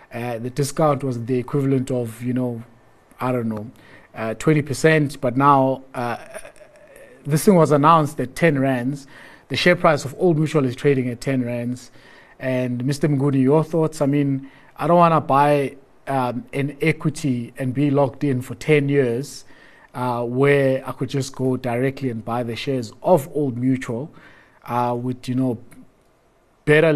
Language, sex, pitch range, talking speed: English, male, 125-140 Hz, 165 wpm